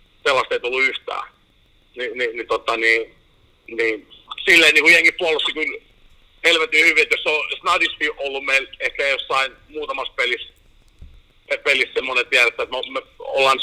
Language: Finnish